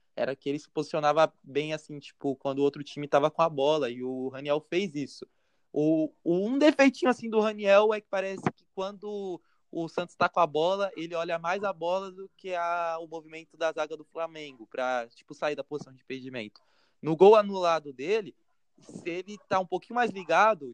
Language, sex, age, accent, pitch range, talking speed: Portuguese, male, 20-39, Brazilian, 140-190 Hz, 205 wpm